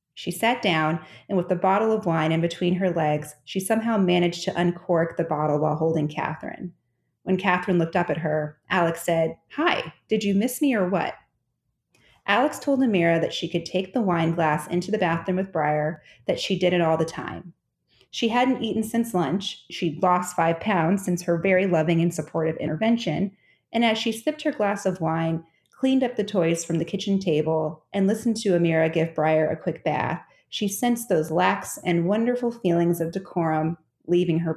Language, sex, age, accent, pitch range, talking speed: English, female, 30-49, American, 160-200 Hz, 195 wpm